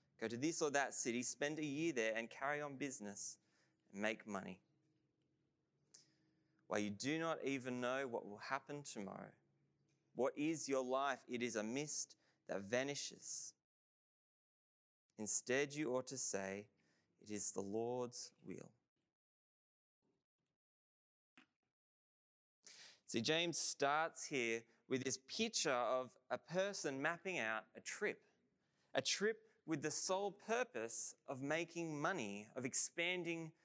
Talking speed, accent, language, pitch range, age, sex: 130 wpm, Australian, English, 120-165 Hz, 20-39, male